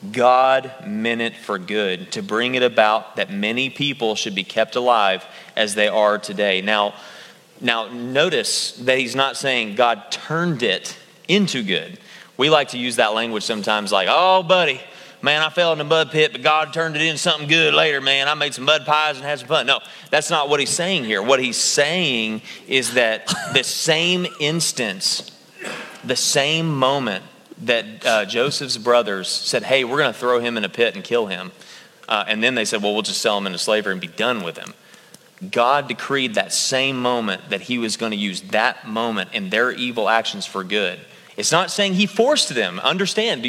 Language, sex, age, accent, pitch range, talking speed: English, male, 30-49, American, 115-160 Hz, 200 wpm